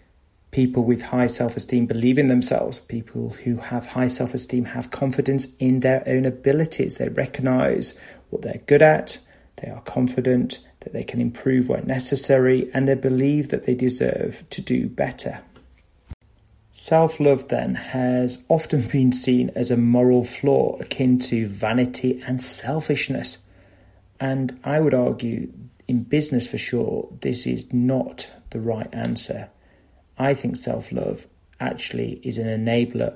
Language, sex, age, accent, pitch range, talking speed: English, male, 30-49, British, 115-135 Hz, 140 wpm